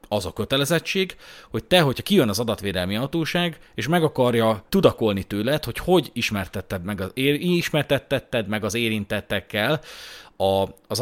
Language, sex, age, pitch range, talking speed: Hungarian, male, 30-49, 110-160 Hz, 125 wpm